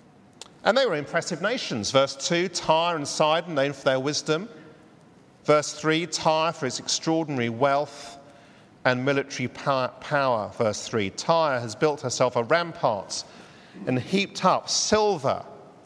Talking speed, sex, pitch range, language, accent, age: 135 wpm, male, 125-155 Hz, English, British, 50-69